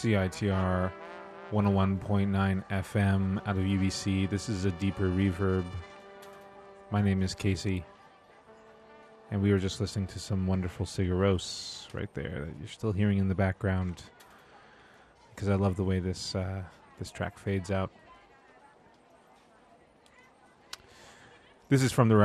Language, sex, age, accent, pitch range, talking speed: English, male, 30-49, American, 95-120 Hz, 140 wpm